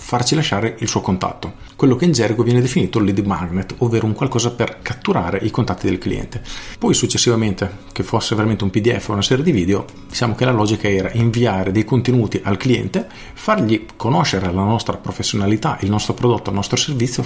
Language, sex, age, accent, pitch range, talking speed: Italian, male, 40-59, native, 100-125 Hz, 190 wpm